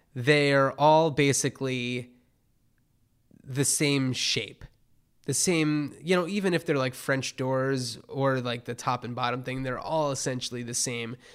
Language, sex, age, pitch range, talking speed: English, male, 20-39, 120-145 Hz, 150 wpm